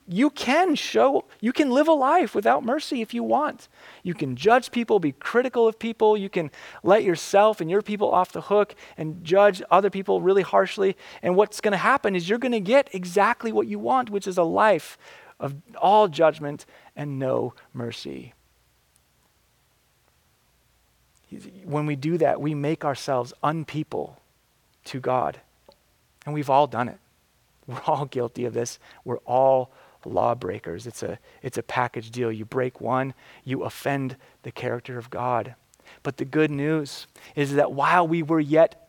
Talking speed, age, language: 165 wpm, 30-49, English